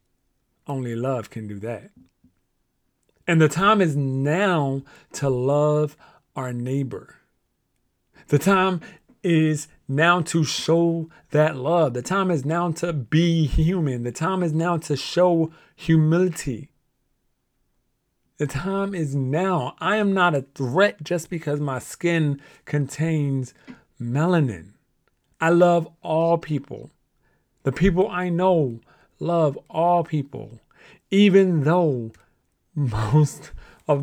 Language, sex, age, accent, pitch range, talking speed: English, male, 40-59, American, 135-170 Hz, 115 wpm